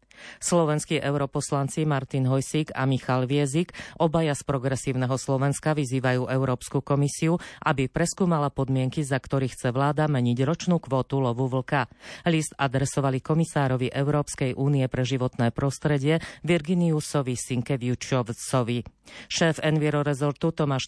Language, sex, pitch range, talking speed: Slovak, female, 130-150 Hz, 115 wpm